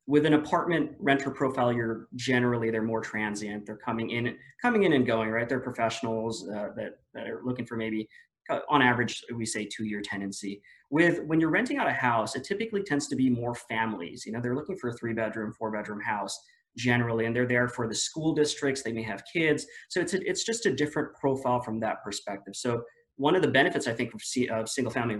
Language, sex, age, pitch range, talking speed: English, male, 20-39, 110-140 Hz, 215 wpm